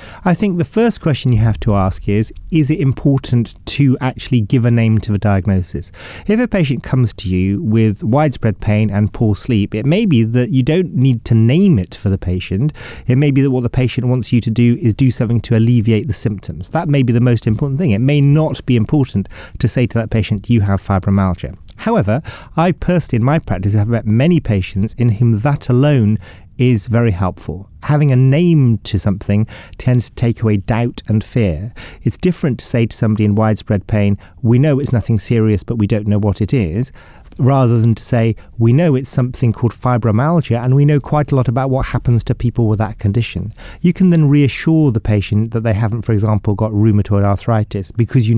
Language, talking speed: English, 215 wpm